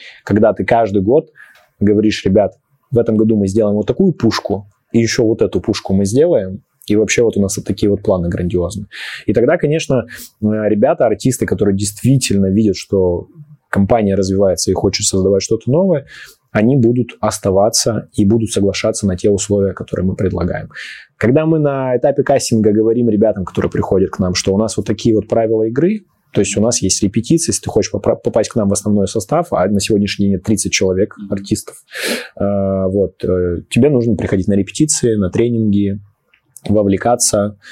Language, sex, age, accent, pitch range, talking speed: Russian, male, 20-39, native, 95-115 Hz, 175 wpm